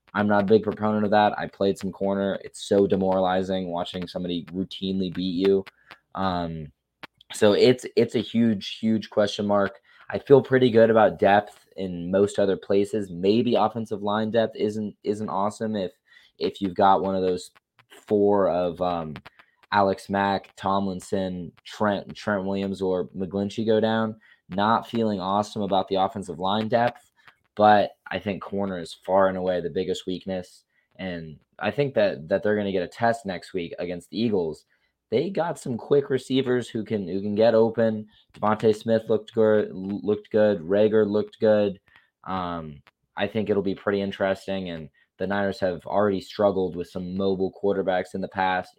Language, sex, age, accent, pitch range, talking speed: English, male, 20-39, American, 95-105 Hz, 170 wpm